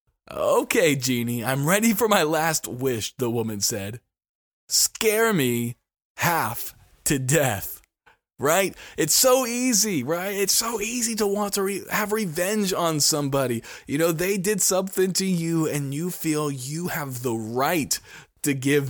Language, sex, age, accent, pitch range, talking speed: English, male, 20-39, American, 125-170 Hz, 150 wpm